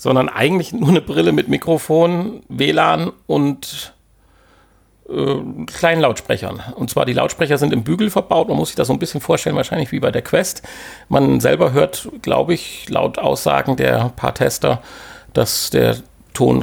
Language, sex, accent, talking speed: German, male, German, 165 wpm